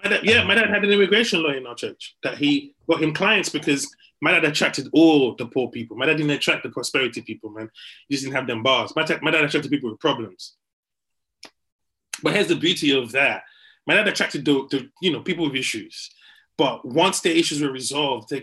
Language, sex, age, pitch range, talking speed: English, male, 20-39, 140-175 Hz, 230 wpm